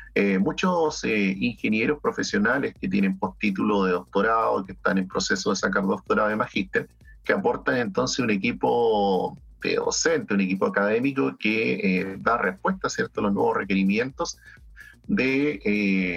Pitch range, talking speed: 95-155 Hz, 145 wpm